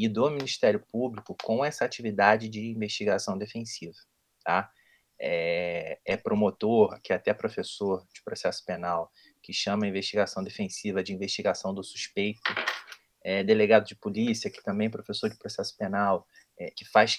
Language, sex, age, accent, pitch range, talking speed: Portuguese, male, 20-39, Brazilian, 110-155 Hz, 140 wpm